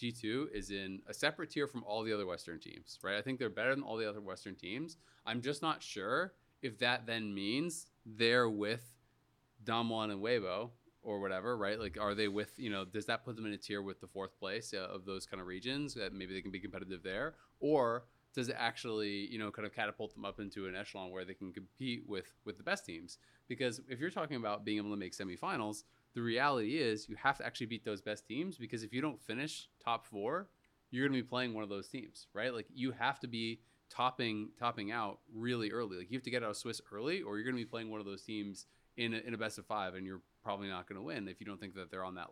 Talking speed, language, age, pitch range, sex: 250 wpm, English, 30-49, 100-120 Hz, male